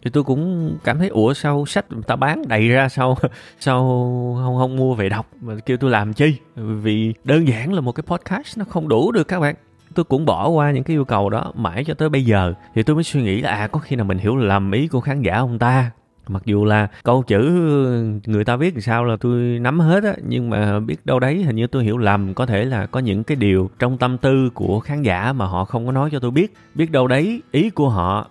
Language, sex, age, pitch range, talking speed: Vietnamese, male, 20-39, 105-140 Hz, 255 wpm